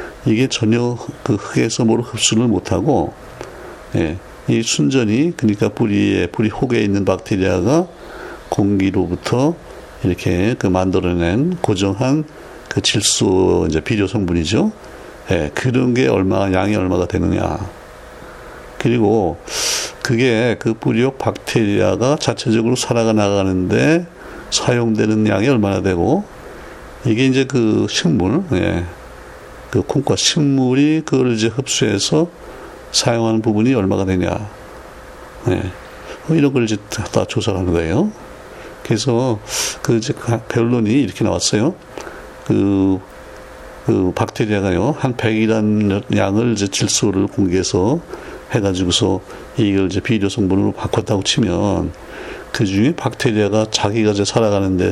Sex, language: male, Korean